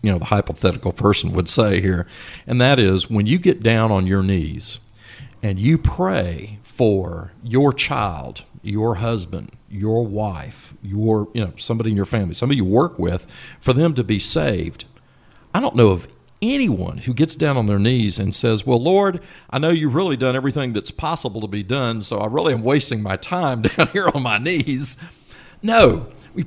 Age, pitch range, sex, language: 50-69, 105-145 Hz, male, English